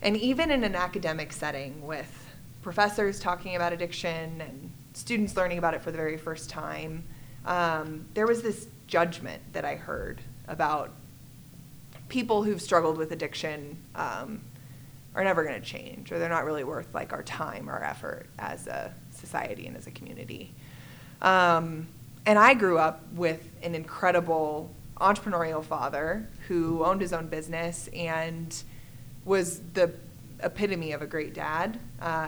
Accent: American